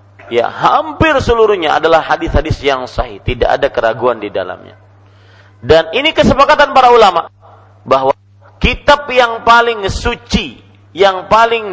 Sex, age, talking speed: male, 40-59, 125 wpm